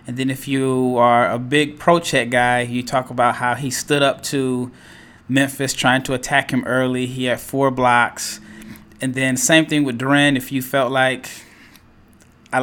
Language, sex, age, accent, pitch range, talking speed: English, male, 20-39, American, 125-140 Hz, 180 wpm